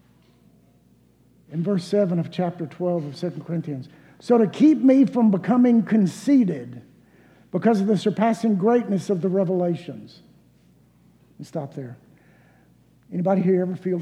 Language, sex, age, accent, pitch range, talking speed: English, male, 60-79, American, 155-205 Hz, 135 wpm